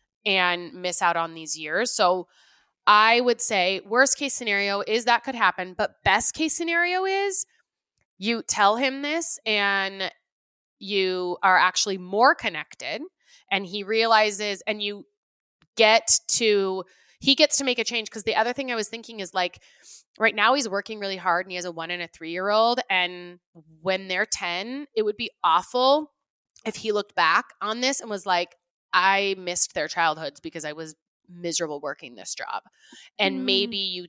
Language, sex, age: English, female, 20-39